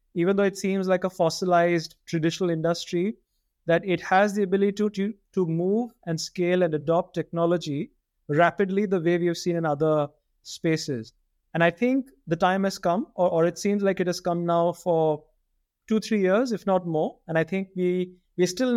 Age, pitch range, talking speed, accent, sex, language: 30-49, 160-185 Hz, 190 wpm, Indian, male, English